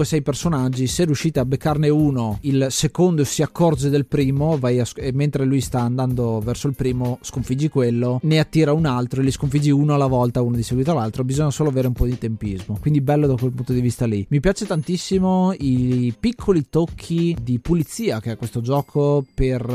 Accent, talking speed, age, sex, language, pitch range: native, 205 wpm, 20-39, male, Italian, 120-150 Hz